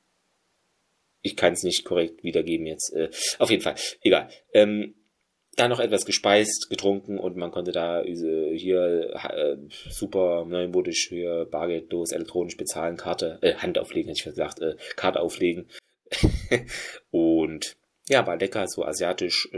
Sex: male